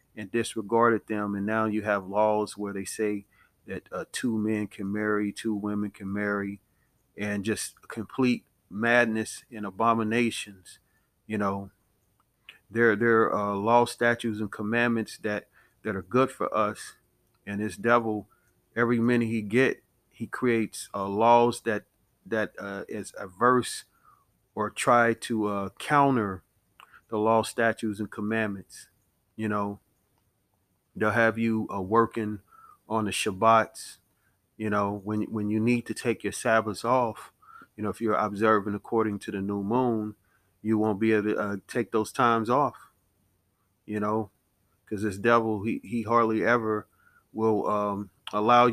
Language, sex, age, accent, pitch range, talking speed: English, male, 40-59, American, 100-115 Hz, 150 wpm